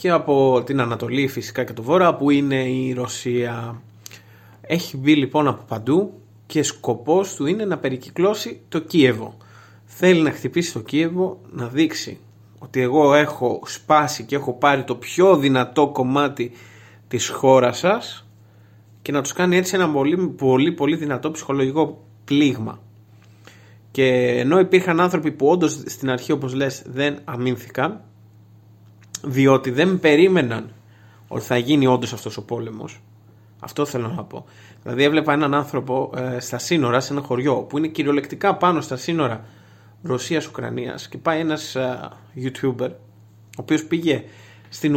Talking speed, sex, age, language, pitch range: 145 wpm, male, 30-49, Greek, 115-150 Hz